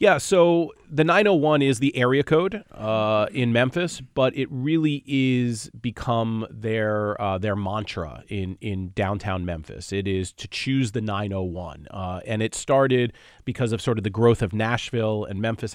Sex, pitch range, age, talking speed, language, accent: male, 100-130 Hz, 30-49, 170 wpm, English, American